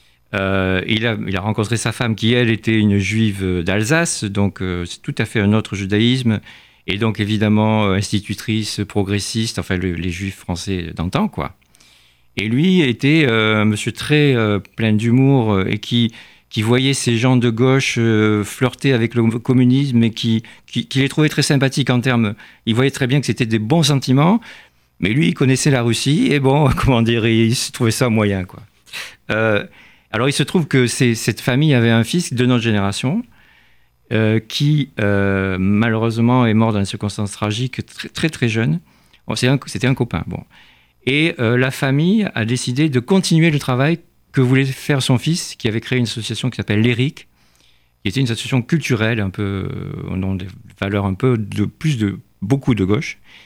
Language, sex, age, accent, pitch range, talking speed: French, male, 50-69, French, 105-135 Hz, 190 wpm